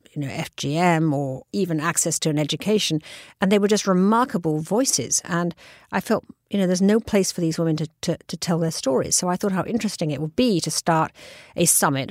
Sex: female